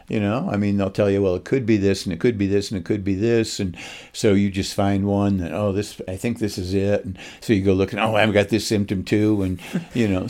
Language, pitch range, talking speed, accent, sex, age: English, 90-105 Hz, 290 wpm, American, male, 60-79